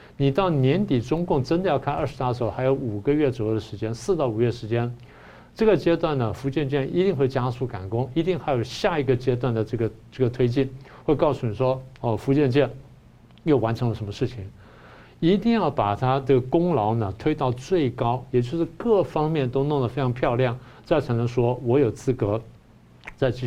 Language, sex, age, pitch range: Chinese, male, 50-69, 115-145 Hz